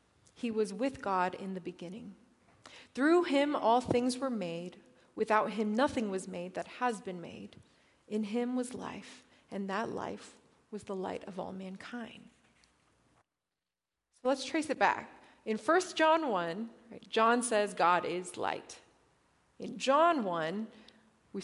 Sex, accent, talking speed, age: female, American, 150 wpm, 30-49